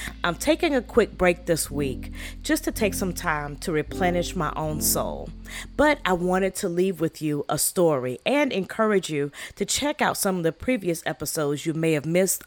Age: 40-59